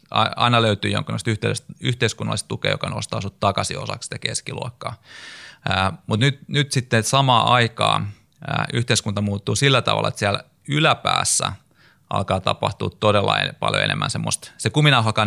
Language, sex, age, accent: Finnish, male, 30-49, native